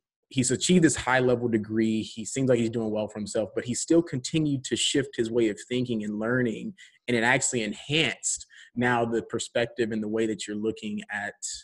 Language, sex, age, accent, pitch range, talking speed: English, male, 20-39, American, 110-125 Hz, 205 wpm